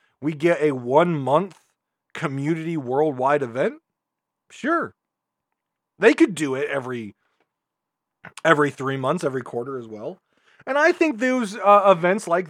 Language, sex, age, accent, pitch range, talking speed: English, male, 40-59, American, 130-175 Hz, 130 wpm